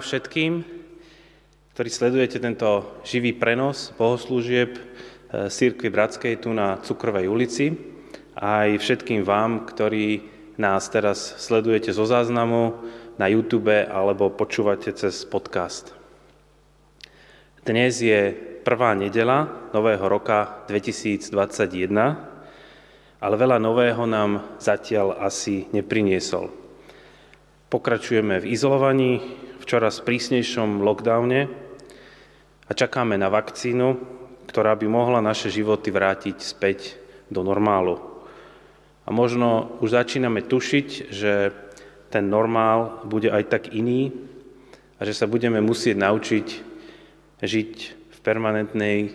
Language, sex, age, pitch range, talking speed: Slovak, male, 30-49, 105-125 Hz, 100 wpm